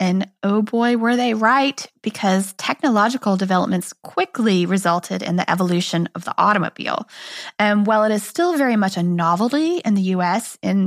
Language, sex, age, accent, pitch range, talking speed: English, female, 20-39, American, 185-240 Hz, 165 wpm